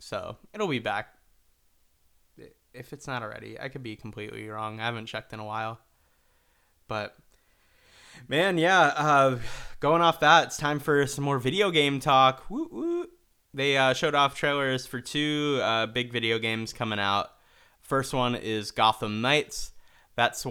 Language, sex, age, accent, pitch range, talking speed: English, male, 20-39, American, 110-135 Hz, 160 wpm